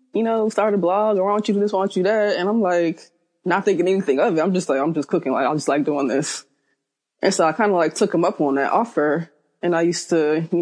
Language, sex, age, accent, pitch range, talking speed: English, female, 20-39, American, 150-190 Hz, 290 wpm